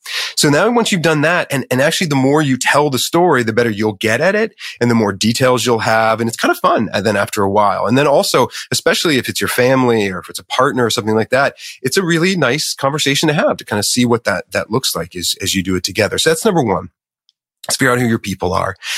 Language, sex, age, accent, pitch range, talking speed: English, male, 30-49, American, 105-135 Hz, 275 wpm